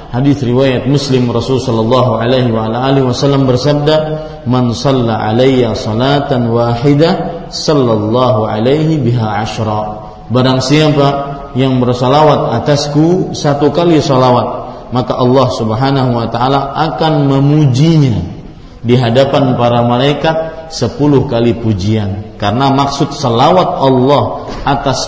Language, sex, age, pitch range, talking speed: Malay, male, 40-59, 120-150 Hz, 95 wpm